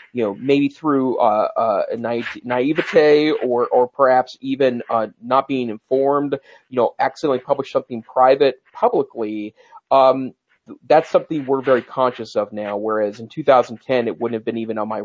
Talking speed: 165 wpm